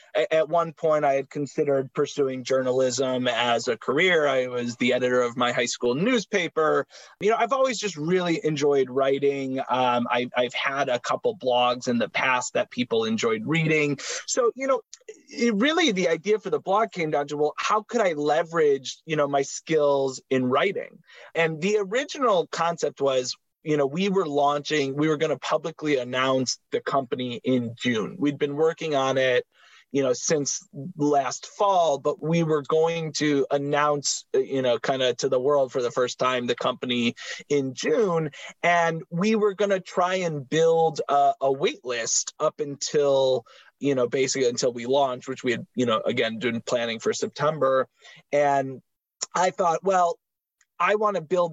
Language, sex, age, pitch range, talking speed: English, male, 30-49, 135-175 Hz, 180 wpm